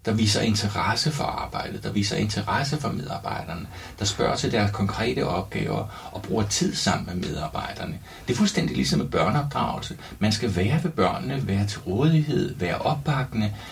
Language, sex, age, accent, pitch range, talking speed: Danish, male, 60-79, native, 95-130 Hz, 165 wpm